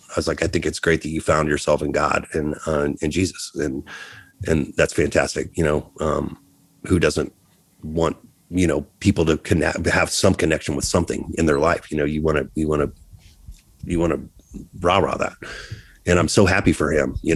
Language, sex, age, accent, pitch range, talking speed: English, male, 30-49, American, 75-85 Hz, 210 wpm